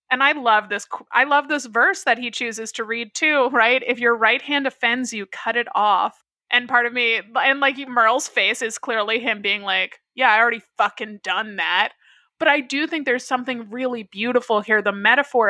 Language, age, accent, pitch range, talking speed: English, 20-39, American, 220-265 Hz, 210 wpm